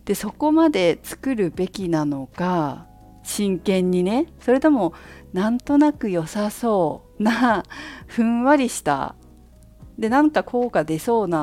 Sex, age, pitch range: female, 50-69, 140-225 Hz